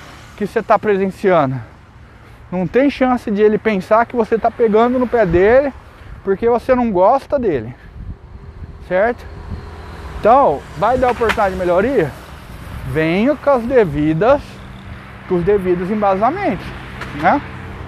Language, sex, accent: Portuguese, male, Brazilian